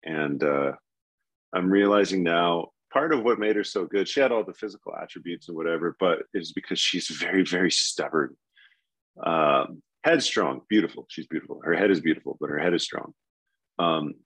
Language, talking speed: English, 175 wpm